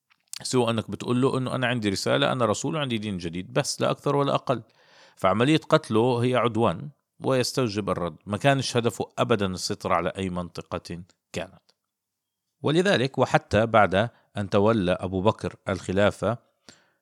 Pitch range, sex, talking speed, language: 95-120 Hz, male, 145 wpm, Arabic